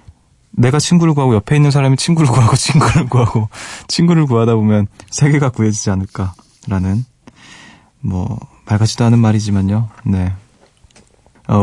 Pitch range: 105-150 Hz